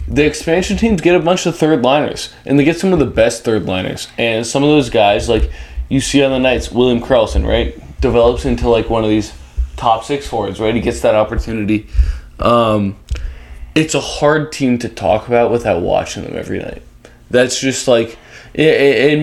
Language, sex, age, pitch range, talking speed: English, male, 20-39, 95-135 Hz, 195 wpm